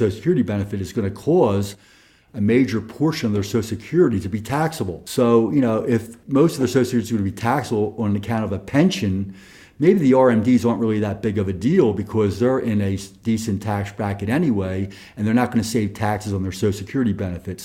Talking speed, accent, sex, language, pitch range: 225 wpm, American, male, English, 100-120 Hz